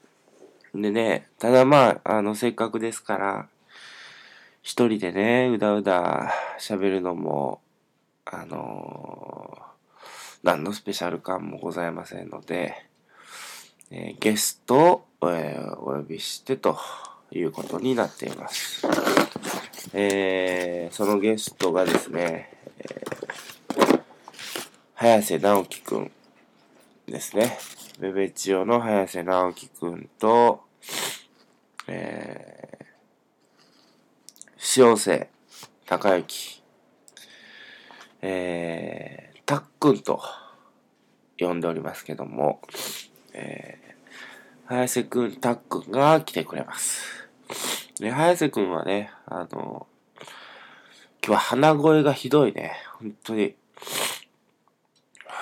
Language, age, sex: Japanese, 20-39, male